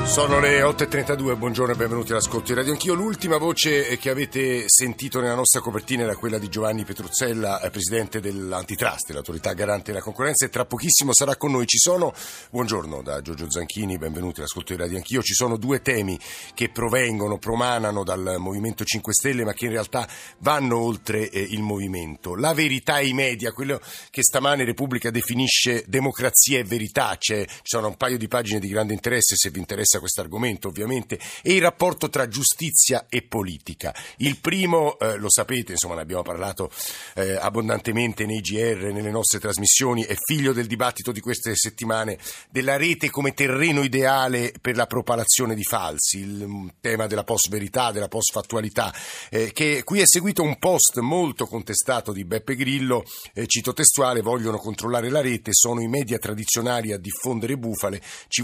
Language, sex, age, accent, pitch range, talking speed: Italian, male, 50-69, native, 105-130 Hz, 175 wpm